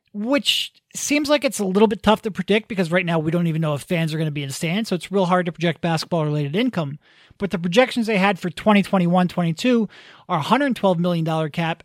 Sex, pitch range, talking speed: male, 170-215 Hz, 235 wpm